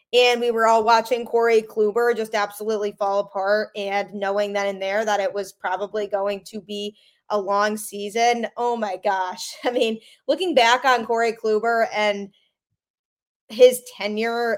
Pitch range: 210-250 Hz